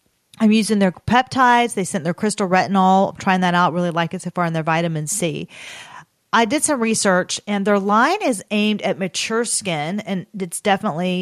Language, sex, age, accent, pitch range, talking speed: English, female, 40-59, American, 170-210 Hz, 200 wpm